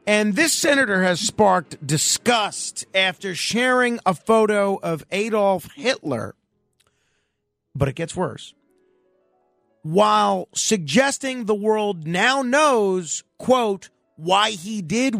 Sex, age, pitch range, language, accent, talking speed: male, 40-59, 155-215 Hz, English, American, 105 wpm